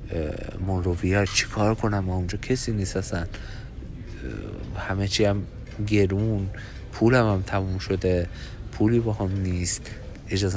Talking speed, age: 120 wpm, 50-69